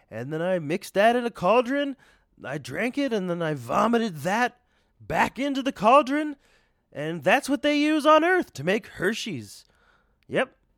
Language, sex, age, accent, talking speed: English, male, 30-49, American, 175 wpm